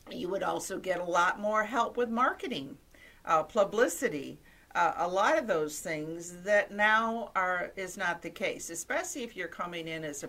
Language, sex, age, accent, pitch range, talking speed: English, female, 50-69, American, 150-195 Hz, 185 wpm